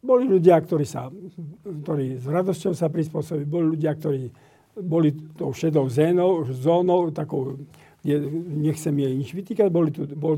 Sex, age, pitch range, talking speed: male, 50-69, 150-175 Hz, 145 wpm